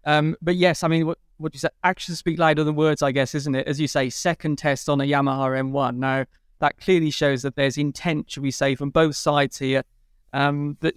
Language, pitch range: English, 145-180 Hz